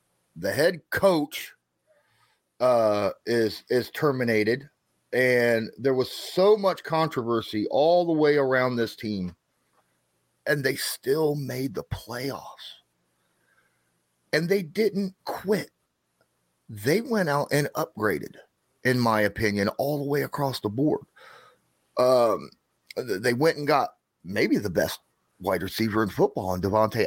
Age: 30-49